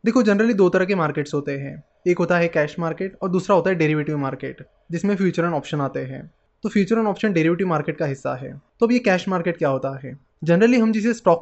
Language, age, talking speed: Hindi, 20-39, 240 wpm